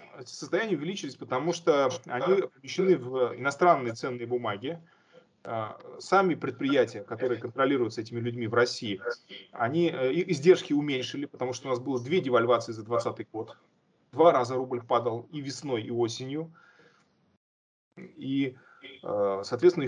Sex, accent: male, native